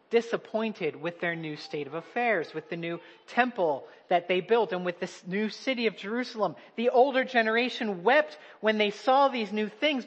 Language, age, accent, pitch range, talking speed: English, 40-59, American, 200-245 Hz, 185 wpm